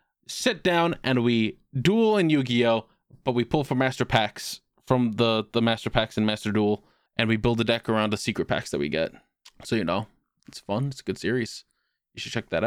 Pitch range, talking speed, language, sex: 115-140 Hz, 225 wpm, English, male